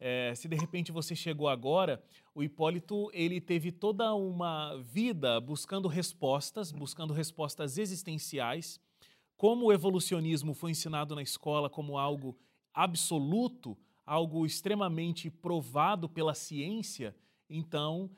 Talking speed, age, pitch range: 115 wpm, 30-49, 155-195 Hz